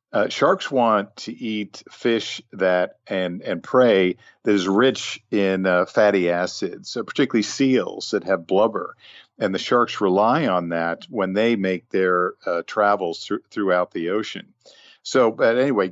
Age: 50-69